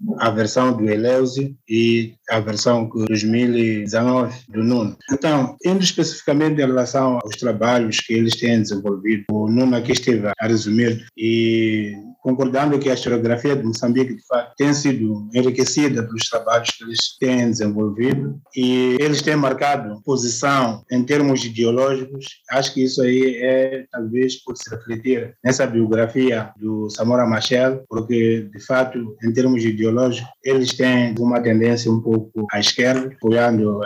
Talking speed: 150 wpm